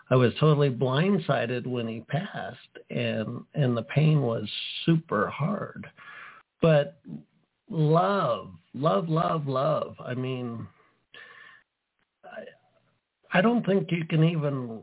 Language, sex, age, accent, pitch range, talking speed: English, male, 50-69, American, 125-165 Hz, 115 wpm